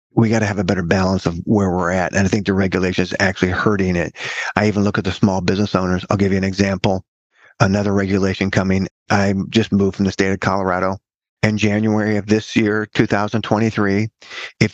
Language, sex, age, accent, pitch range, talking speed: English, male, 50-69, American, 95-110 Hz, 210 wpm